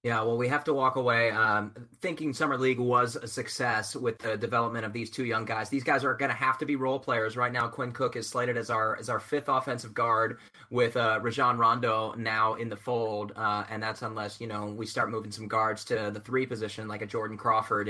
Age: 20-39